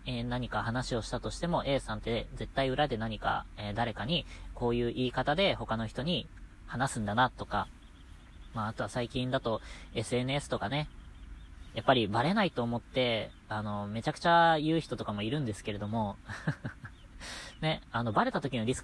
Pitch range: 110-150 Hz